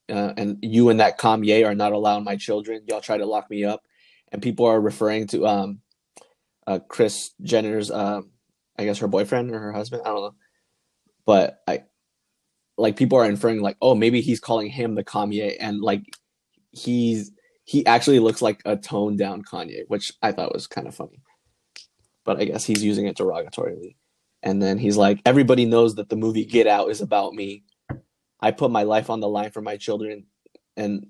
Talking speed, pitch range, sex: 195 wpm, 100-110 Hz, male